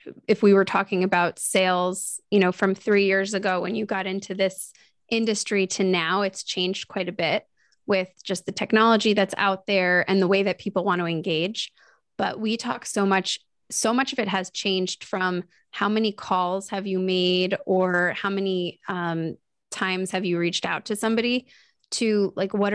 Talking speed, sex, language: 190 wpm, female, English